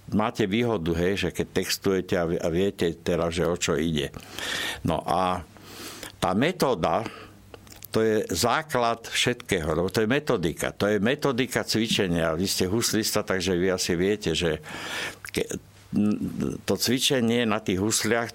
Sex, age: male, 60-79